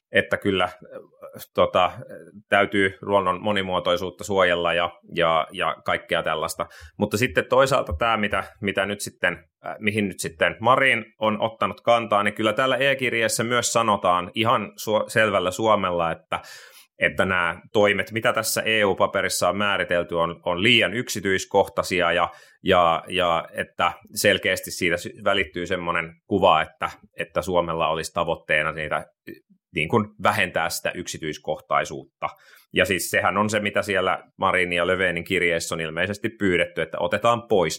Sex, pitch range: male, 90-115 Hz